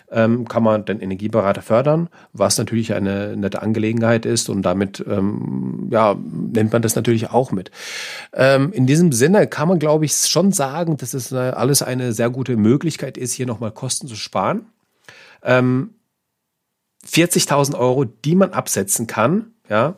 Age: 40-59